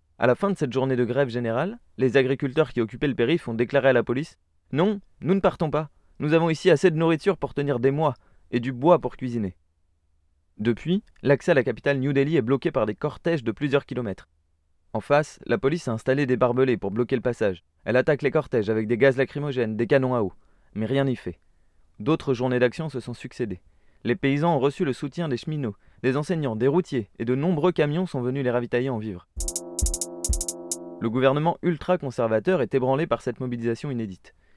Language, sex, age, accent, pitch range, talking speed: French, male, 20-39, French, 110-140 Hz, 210 wpm